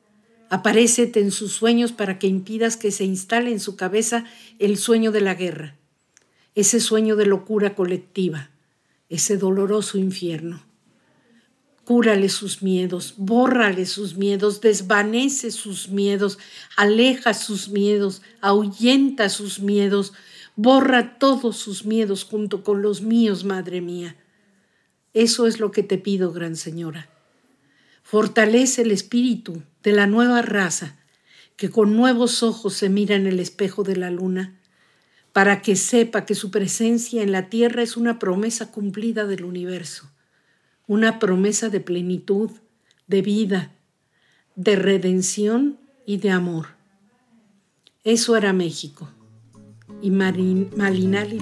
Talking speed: 125 wpm